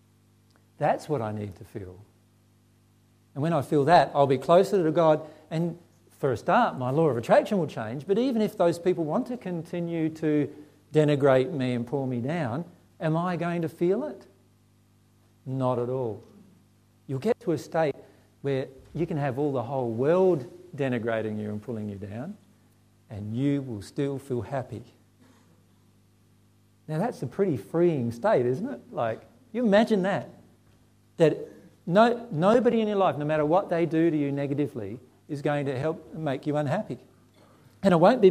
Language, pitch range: English, 110-160 Hz